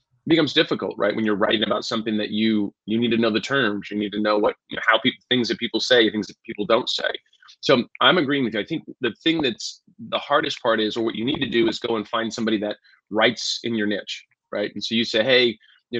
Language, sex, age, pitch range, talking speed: English, male, 30-49, 105-120 Hz, 265 wpm